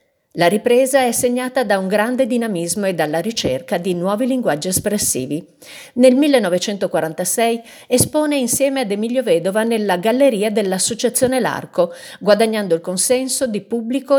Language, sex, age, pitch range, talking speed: Italian, female, 50-69, 180-255 Hz, 130 wpm